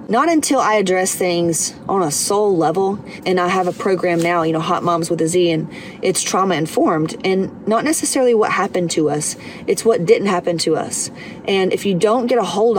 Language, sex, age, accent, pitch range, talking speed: English, female, 30-49, American, 175-210 Hz, 215 wpm